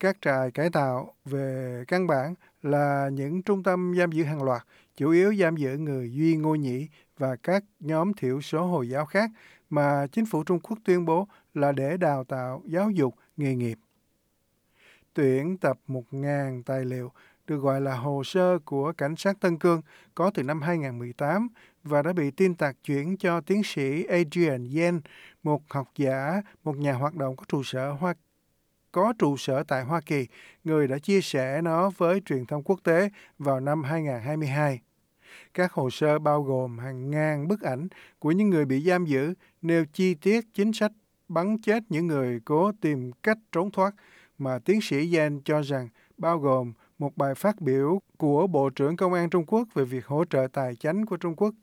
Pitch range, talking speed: 135-180 Hz, 190 wpm